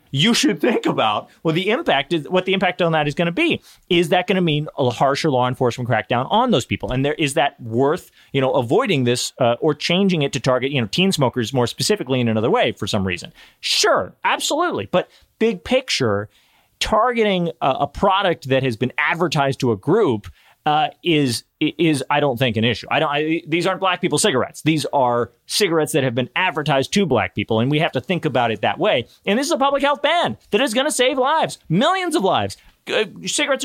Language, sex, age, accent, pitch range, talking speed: English, male, 30-49, American, 125-195 Hz, 225 wpm